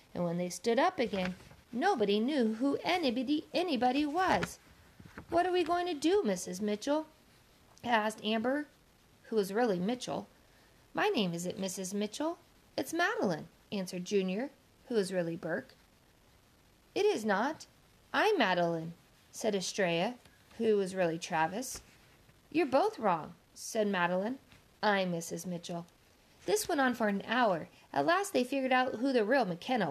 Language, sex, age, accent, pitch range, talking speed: English, female, 40-59, American, 195-280 Hz, 145 wpm